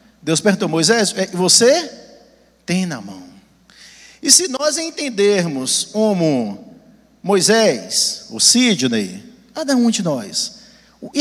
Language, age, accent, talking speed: Portuguese, 50-69, Brazilian, 130 wpm